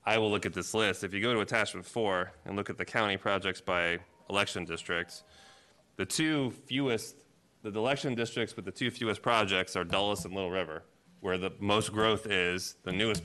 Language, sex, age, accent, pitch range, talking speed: English, male, 30-49, American, 90-115 Hz, 200 wpm